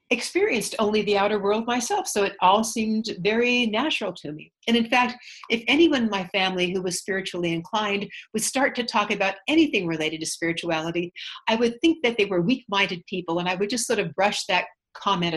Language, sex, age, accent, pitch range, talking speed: English, female, 60-79, American, 180-245 Hz, 205 wpm